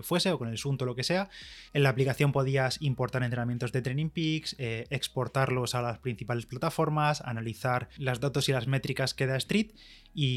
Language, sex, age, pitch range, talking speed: Spanish, male, 20-39, 125-145 Hz, 190 wpm